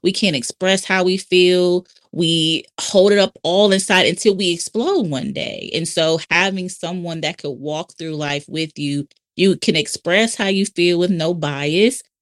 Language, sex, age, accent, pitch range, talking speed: English, female, 20-39, American, 150-190 Hz, 180 wpm